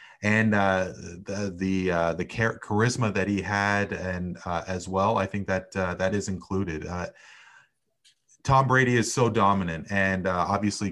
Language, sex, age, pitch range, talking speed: English, male, 30-49, 90-110 Hz, 165 wpm